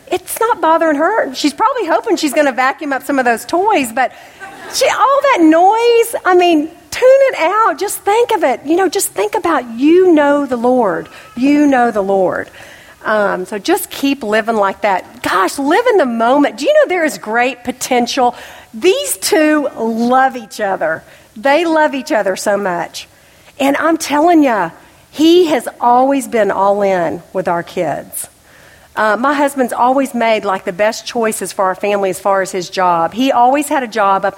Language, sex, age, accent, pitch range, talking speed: English, female, 50-69, American, 200-325 Hz, 190 wpm